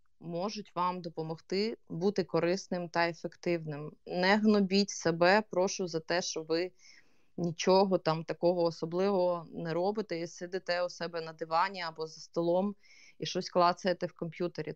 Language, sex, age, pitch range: Ukrainian, female, 20-39, 165-195 Hz